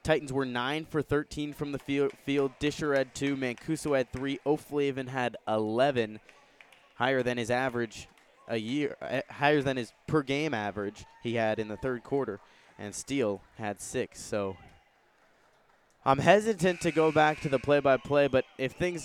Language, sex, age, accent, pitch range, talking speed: English, male, 20-39, American, 125-145 Hz, 165 wpm